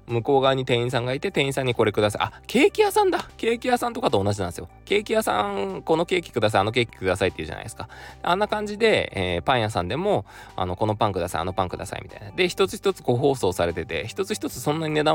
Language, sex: Japanese, male